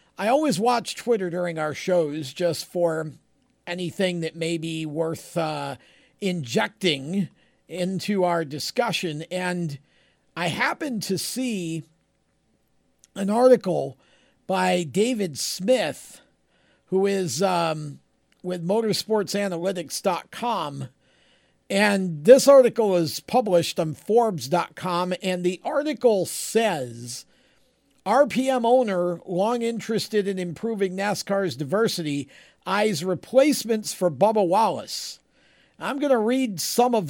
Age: 50-69